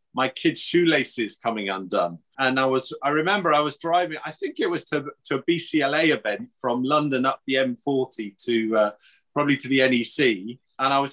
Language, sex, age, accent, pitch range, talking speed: English, male, 30-49, British, 125-150 Hz, 190 wpm